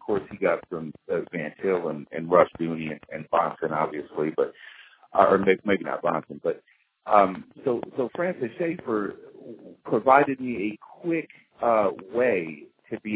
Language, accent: English, American